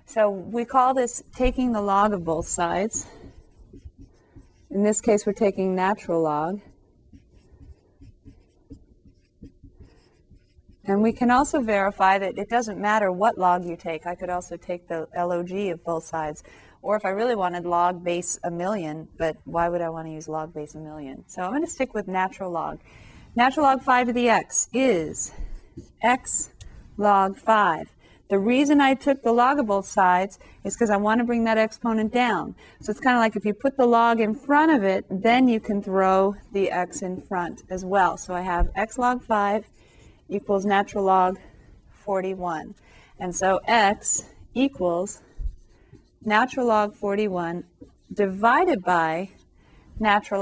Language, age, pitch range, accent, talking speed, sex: English, 30-49, 175-225 Hz, American, 165 wpm, female